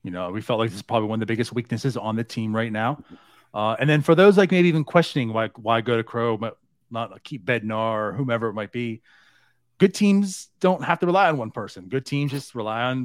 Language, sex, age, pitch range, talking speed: English, male, 30-49, 115-150 Hz, 255 wpm